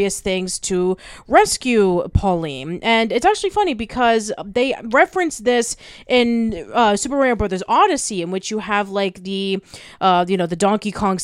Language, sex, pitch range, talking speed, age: English, female, 190-255 Hz, 160 wpm, 30-49